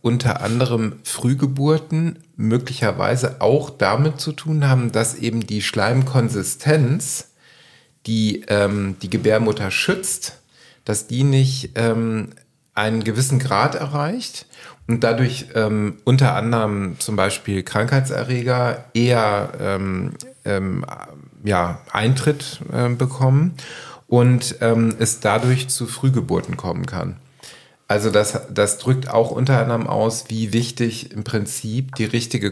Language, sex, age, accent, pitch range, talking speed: German, male, 40-59, German, 105-130 Hz, 115 wpm